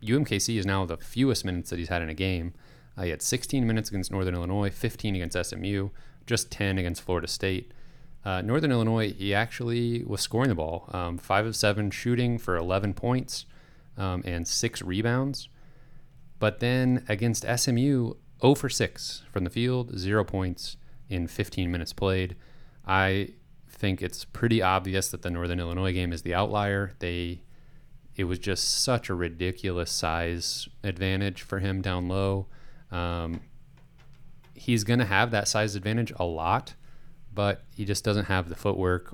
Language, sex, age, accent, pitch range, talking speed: English, male, 30-49, American, 90-125 Hz, 165 wpm